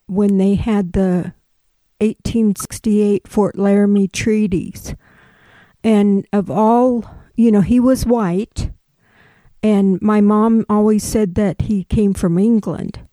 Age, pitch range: 50-69, 190-215 Hz